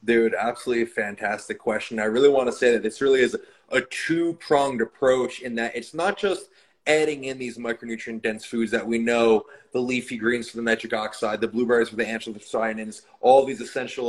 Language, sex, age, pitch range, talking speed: English, male, 20-39, 120-155 Hz, 185 wpm